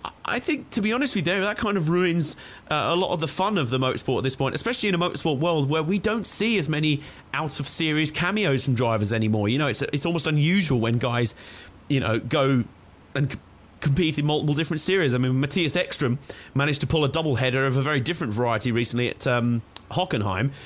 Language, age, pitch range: English, 30-49, 125-165 Hz